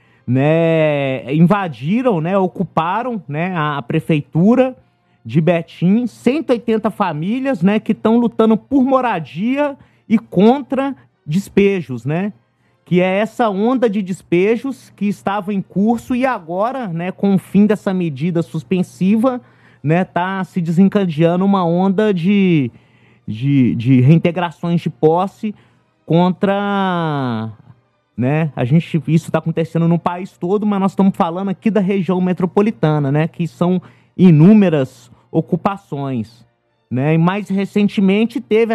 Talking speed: 125 wpm